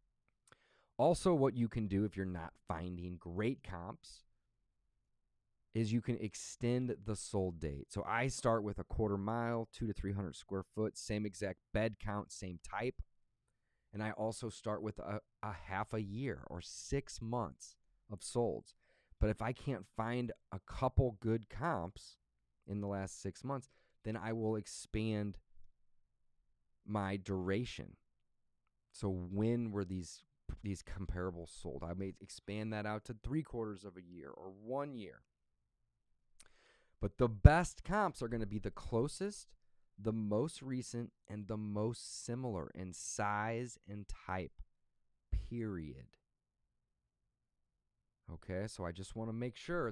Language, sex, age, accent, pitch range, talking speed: English, male, 30-49, American, 95-120 Hz, 145 wpm